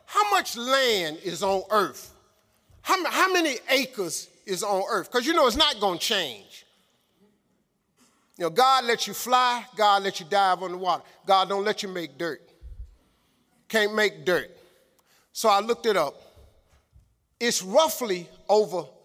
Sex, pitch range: male, 185-260 Hz